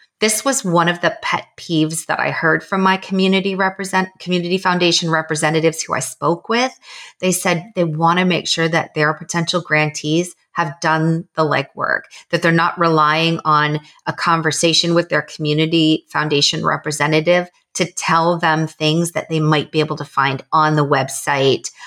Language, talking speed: English, 170 wpm